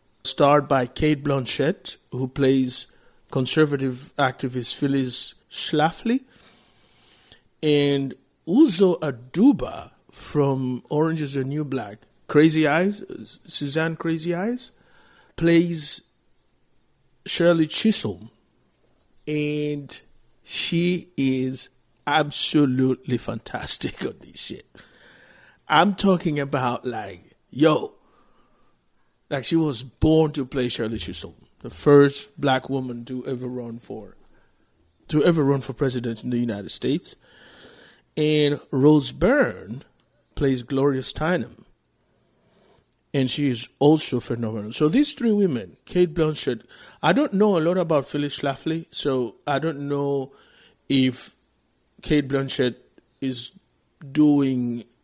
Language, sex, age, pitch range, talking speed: English, male, 50-69, 130-160 Hz, 110 wpm